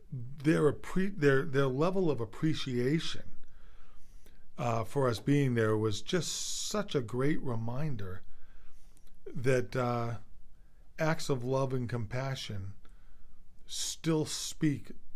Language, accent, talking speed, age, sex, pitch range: English, American, 105 wpm, 40-59, male, 105-135 Hz